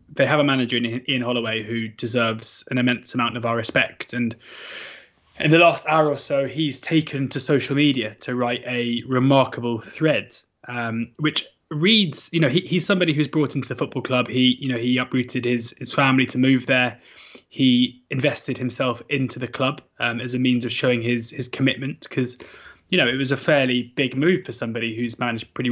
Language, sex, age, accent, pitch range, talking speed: English, male, 20-39, British, 120-130 Hz, 200 wpm